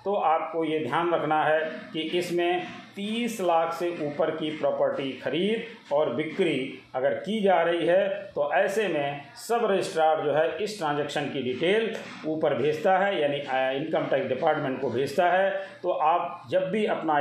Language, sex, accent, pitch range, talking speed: Hindi, male, native, 145-185 Hz, 165 wpm